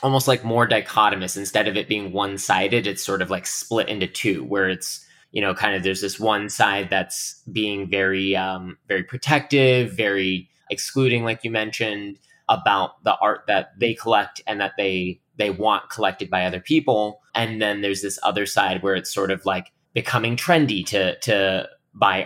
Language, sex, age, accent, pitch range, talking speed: English, male, 20-39, American, 95-120 Hz, 185 wpm